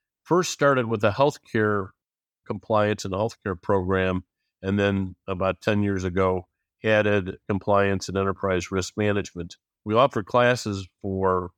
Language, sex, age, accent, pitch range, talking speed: English, male, 50-69, American, 95-110 Hz, 130 wpm